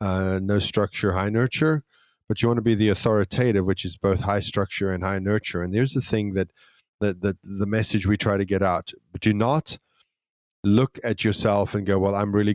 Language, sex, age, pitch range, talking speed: English, male, 20-39, 90-105 Hz, 210 wpm